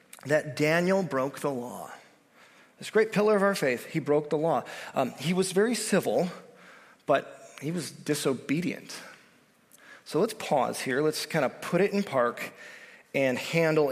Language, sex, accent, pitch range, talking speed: English, male, American, 130-170 Hz, 160 wpm